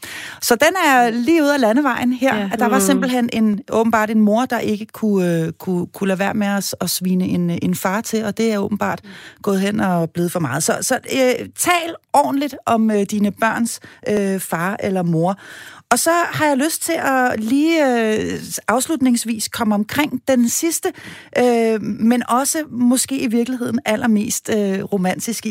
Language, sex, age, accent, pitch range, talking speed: Danish, female, 30-49, native, 195-250 Hz, 175 wpm